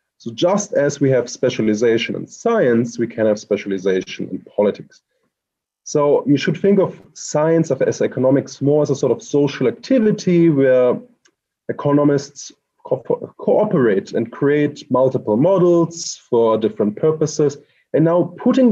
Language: English